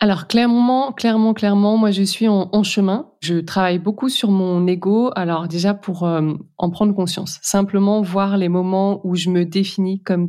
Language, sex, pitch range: French, female, 170-200 Hz